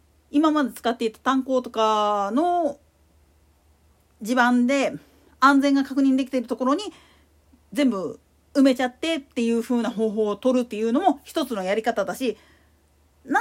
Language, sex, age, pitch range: Japanese, female, 40-59, 225-310 Hz